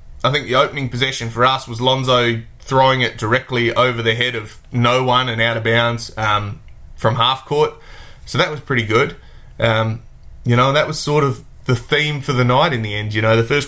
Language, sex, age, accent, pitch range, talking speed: English, male, 20-39, Australian, 110-130 Hz, 220 wpm